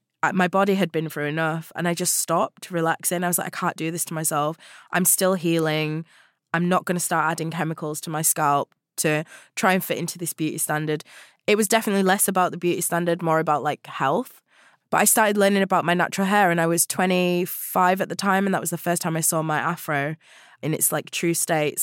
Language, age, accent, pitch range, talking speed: English, 20-39, British, 155-180 Hz, 230 wpm